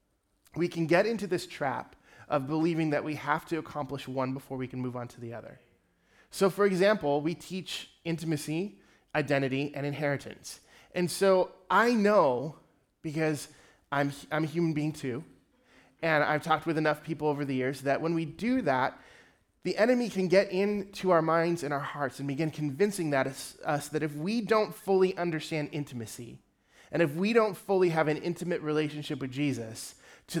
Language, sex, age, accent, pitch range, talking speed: English, male, 20-39, American, 140-175 Hz, 180 wpm